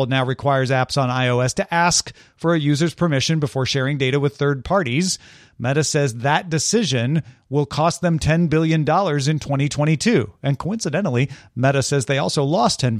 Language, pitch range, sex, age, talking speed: English, 130-175 Hz, male, 40-59, 165 wpm